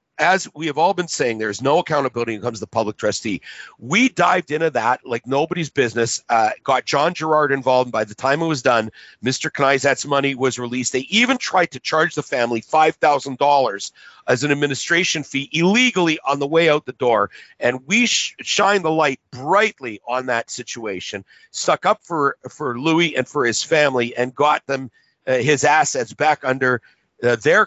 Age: 50-69